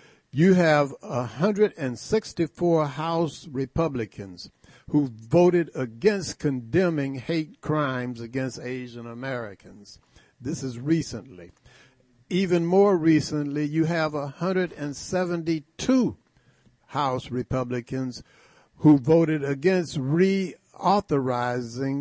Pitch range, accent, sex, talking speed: 130-170 Hz, American, male, 80 wpm